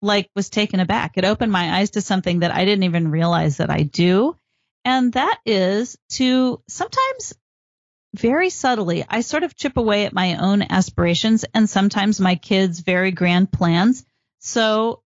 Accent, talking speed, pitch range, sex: American, 165 wpm, 185-230 Hz, female